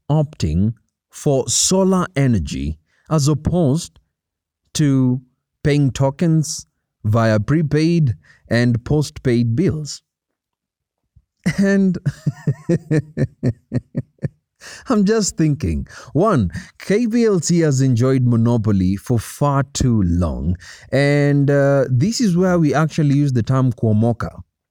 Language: English